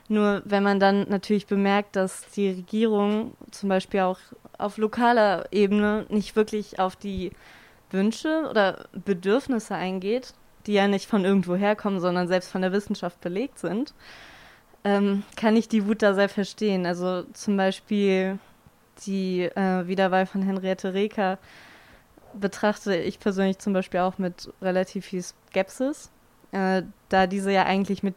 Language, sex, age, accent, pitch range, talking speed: German, female, 20-39, German, 190-215 Hz, 145 wpm